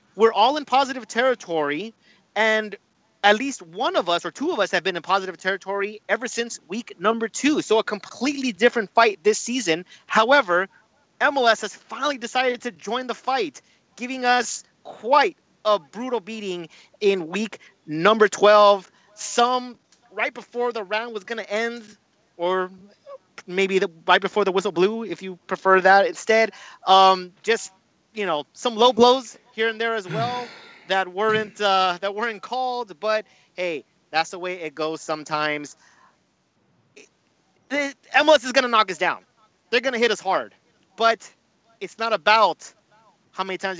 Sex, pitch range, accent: male, 185-235 Hz, American